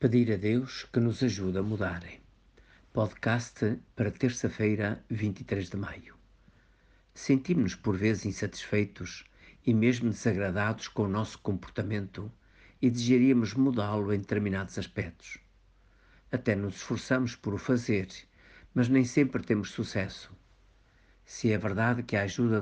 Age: 50-69